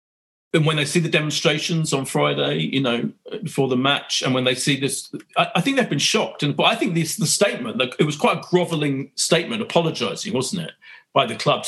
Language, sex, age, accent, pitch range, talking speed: English, male, 40-59, British, 135-180 Hz, 230 wpm